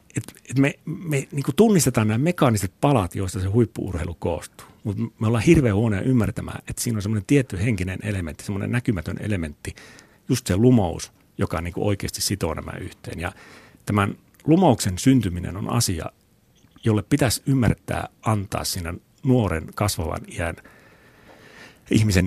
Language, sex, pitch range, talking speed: Finnish, male, 95-130 Hz, 140 wpm